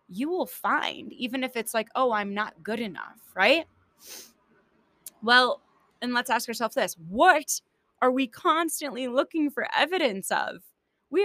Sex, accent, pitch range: female, American, 205-270 Hz